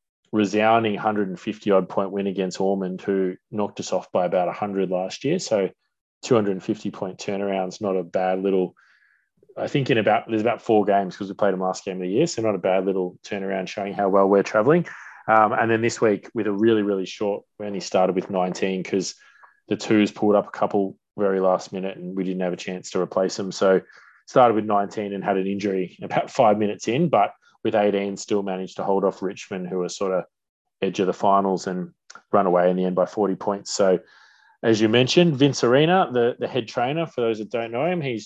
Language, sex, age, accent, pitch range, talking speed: English, male, 20-39, Australian, 95-110 Hz, 220 wpm